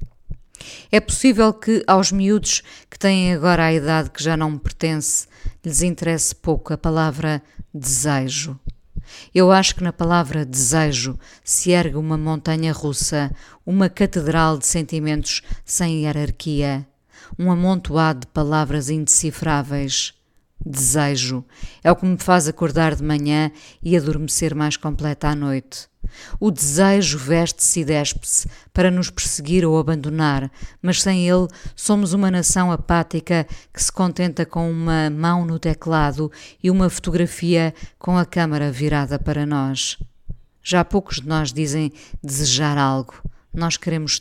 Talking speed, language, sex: 135 wpm, Portuguese, female